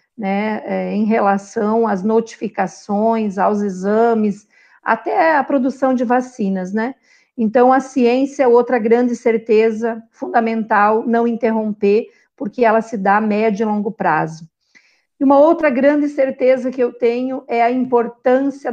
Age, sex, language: 50-69, female, Portuguese